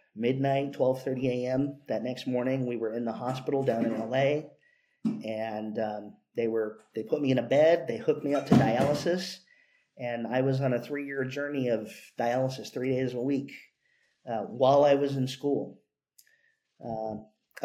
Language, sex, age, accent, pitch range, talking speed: English, male, 40-59, American, 120-145 Hz, 175 wpm